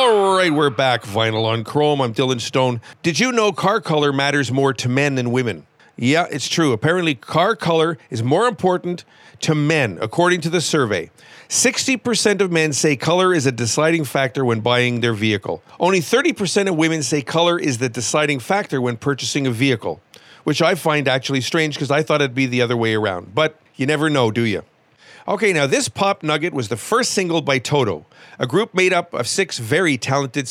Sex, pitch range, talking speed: male, 130-175 Hz, 200 wpm